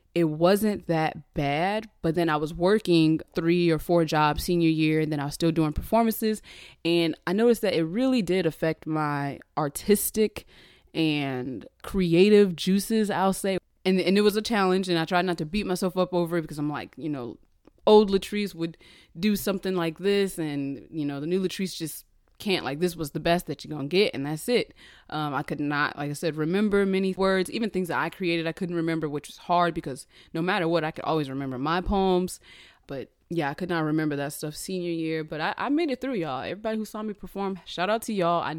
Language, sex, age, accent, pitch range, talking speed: English, female, 20-39, American, 155-195 Hz, 220 wpm